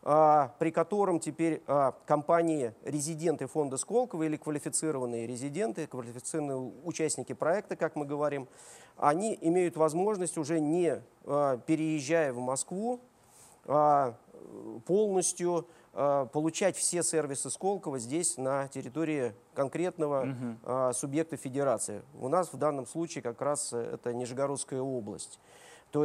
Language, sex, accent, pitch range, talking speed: Russian, male, native, 135-170 Hz, 105 wpm